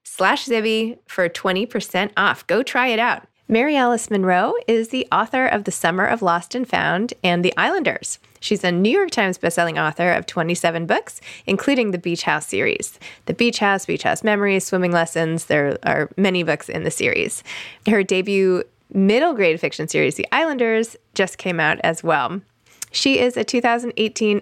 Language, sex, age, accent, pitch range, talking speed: English, female, 20-39, American, 165-225 Hz, 175 wpm